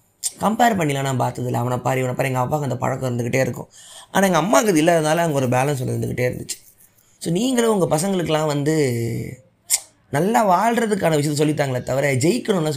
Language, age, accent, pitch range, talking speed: Tamil, 20-39, native, 125-165 Hz, 160 wpm